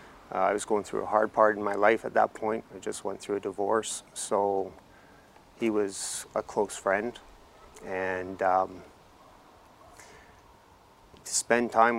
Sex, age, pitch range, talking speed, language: male, 30-49, 100-110 Hz, 155 wpm, English